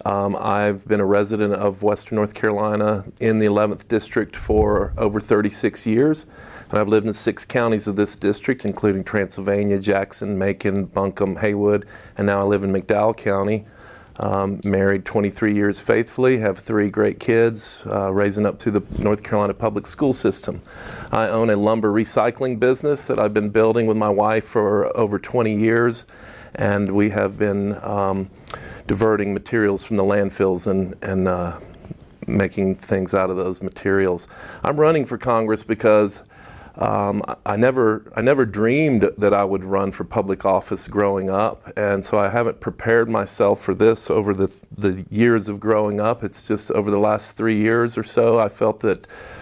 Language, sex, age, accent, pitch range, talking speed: English, male, 50-69, American, 100-110 Hz, 170 wpm